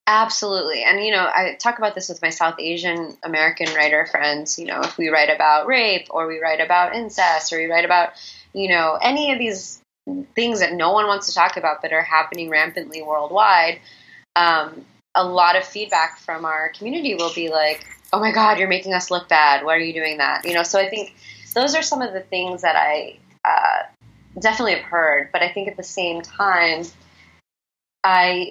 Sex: female